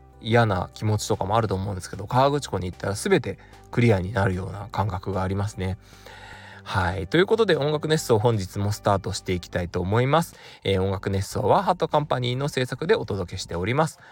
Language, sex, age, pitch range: Japanese, male, 20-39, 95-130 Hz